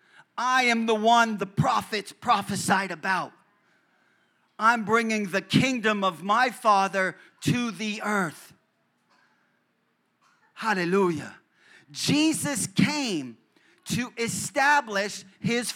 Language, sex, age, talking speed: English, male, 40-59, 90 wpm